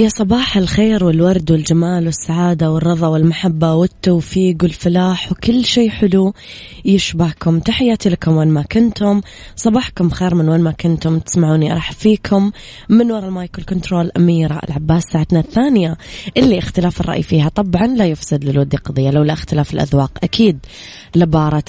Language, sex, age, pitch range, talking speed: Arabic, female, 20-39, 150-185 Hz, 140 wpm